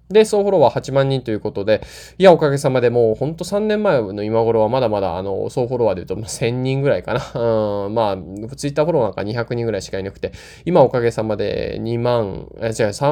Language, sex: Japanese, male